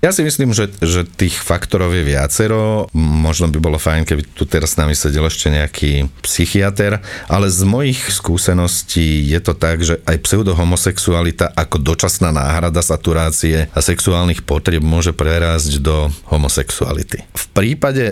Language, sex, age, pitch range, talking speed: Slovak, male, 40-59, 75-90 Hz, 150 wpm